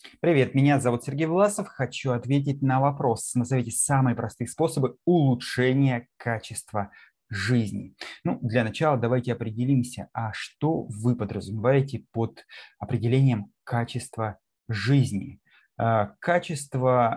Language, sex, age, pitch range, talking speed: Russian, male, 20-39, 110-130 Hz, 105 wpm